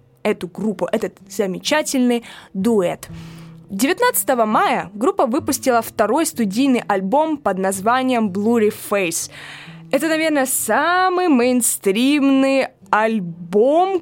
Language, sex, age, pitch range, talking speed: Russian, female, 20-39, 195-260 Hz, 90 wpm